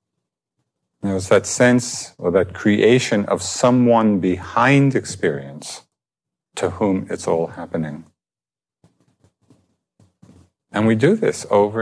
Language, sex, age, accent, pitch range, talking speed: English, male, 50-69, American, 90-105 Hz, 110 wpm